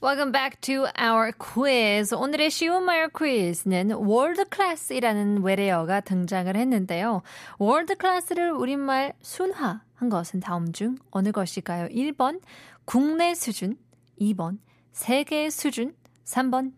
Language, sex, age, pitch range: Korean, female, 20-39, 195-285 Hz